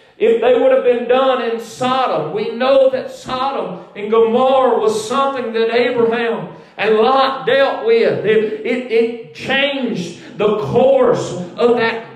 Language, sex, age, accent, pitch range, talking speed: English, male, 40-59, American, 235-275 Hz, 150 wpm